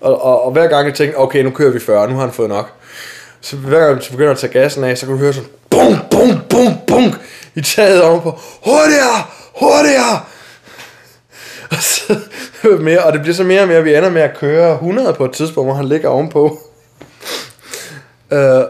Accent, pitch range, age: native, 140-175 Hz, 20-39